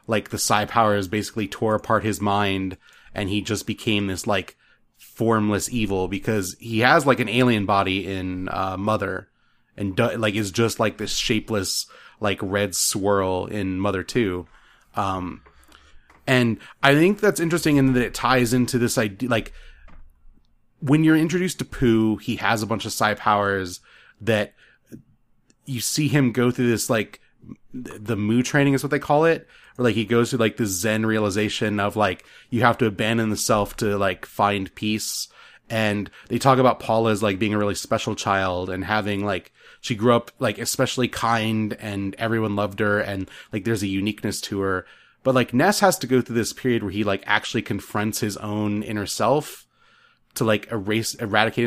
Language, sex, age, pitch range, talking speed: English, male, 30-49, 100-120 Hz, 180 wpm